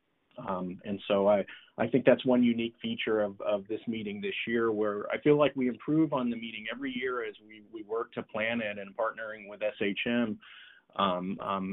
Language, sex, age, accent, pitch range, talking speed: English, male, 30-49, American, 100-120 Hz, 205 wpm